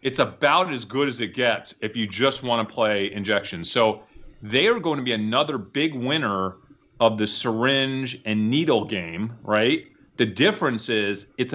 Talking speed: 175 wpm